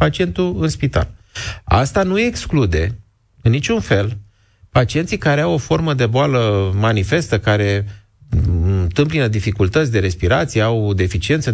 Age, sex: 30-49, male